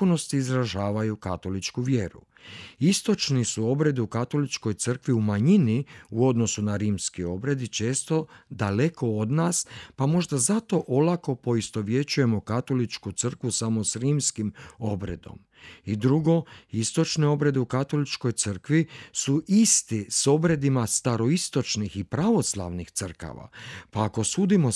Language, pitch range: Croatian, 100-140 Hz